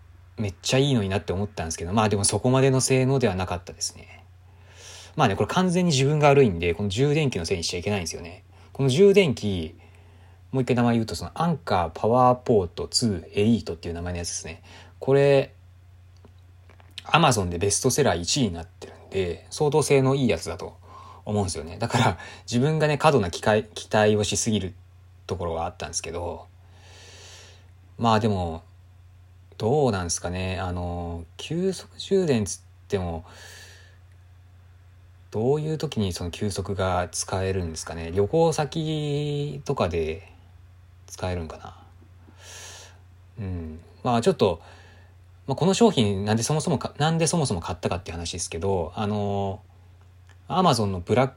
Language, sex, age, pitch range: Japanese, male, 20-39, 90-125 Hz